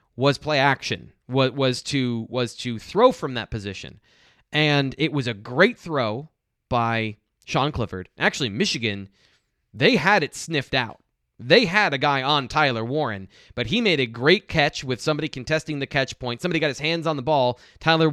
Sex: male